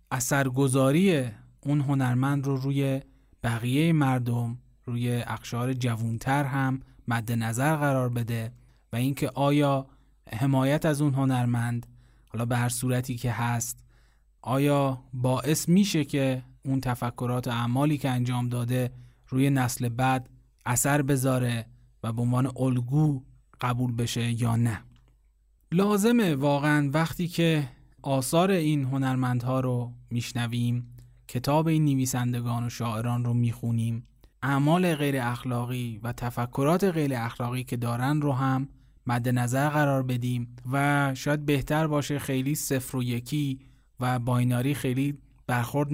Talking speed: 125 wpm